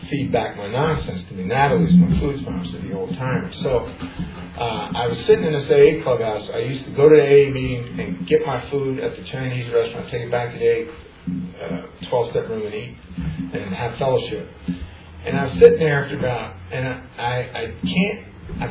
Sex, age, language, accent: male, 50-69, English, American